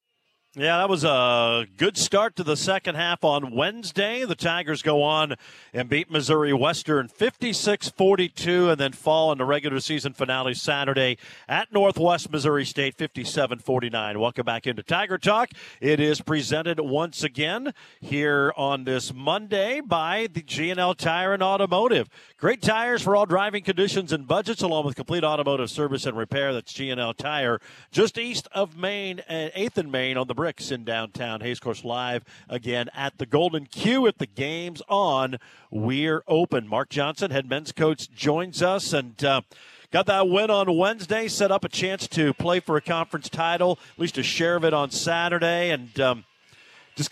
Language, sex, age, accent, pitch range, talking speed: English, male, 50-69, American, 140-180 Hz, 170 wpm